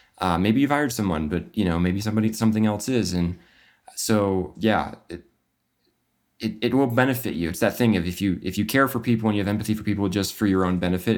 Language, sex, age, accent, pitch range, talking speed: English, male, 20-39, American, 95-115 Hz, 235 wpm